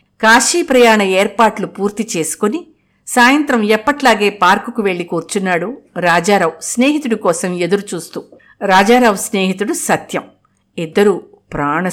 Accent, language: native, Telugu